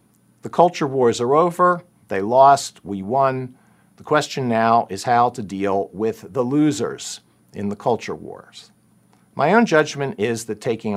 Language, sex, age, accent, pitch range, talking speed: English, male, 50-69, American, 100-140 Hz, 160 wpm